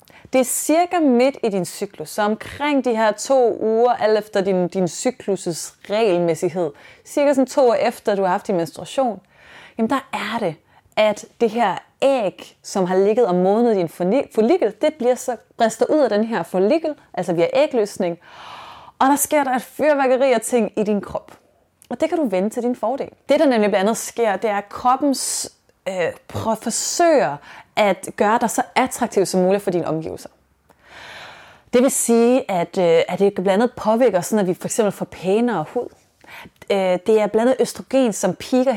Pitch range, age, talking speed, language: 195-255 Hz, 30-49, 180 wpm, Danish